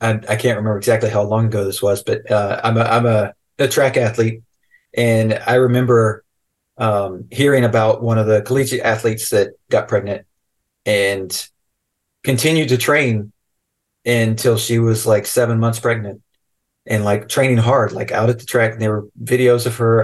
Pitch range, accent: 105-125 Hz, American